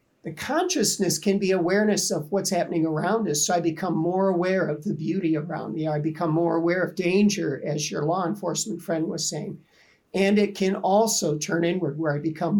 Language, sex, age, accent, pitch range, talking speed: English, male, 50-69, American, 160-195 Hz, 200 wpm